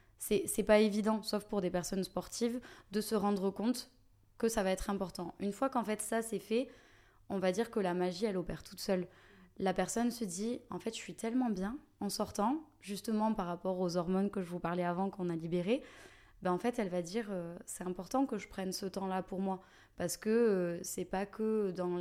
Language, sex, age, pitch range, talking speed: French, female, 20-39, 185-220 Hz, 225 wpm